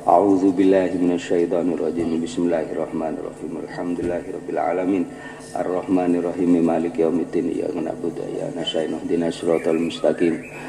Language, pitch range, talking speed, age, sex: Indonesian, 85-100 Hz, 145 wpm, 50-69, male